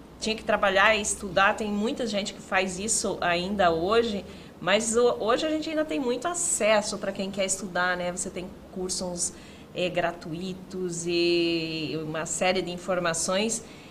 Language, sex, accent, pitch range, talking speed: Portuguese, female, Brazilian, 180-220 Hz, 155 wpm